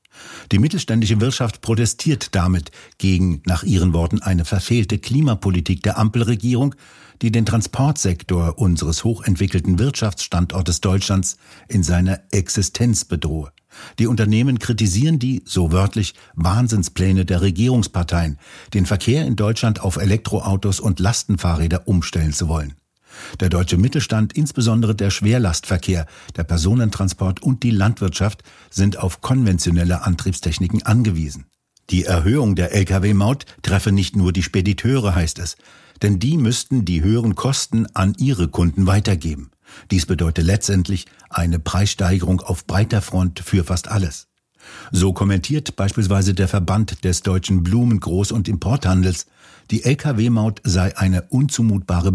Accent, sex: German, male